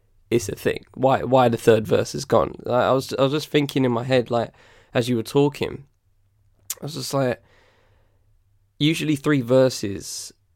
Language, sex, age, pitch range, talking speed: English, male, 10-29, 105-140 Hz, 190 wpm